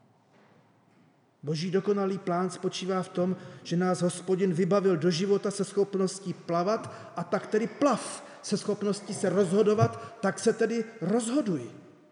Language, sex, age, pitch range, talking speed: Czech, male, 30-49, 150-210 Hz, 135 wpm